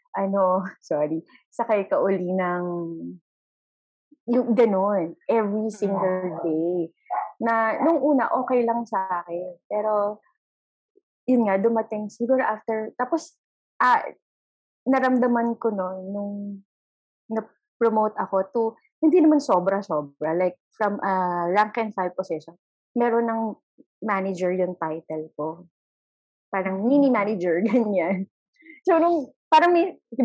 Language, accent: English, Filipino